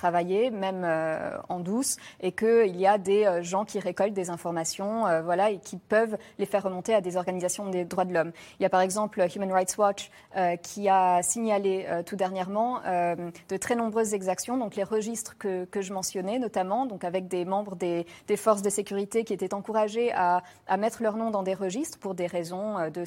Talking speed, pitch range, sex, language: 220 wpm, 180-210 Hz, female, French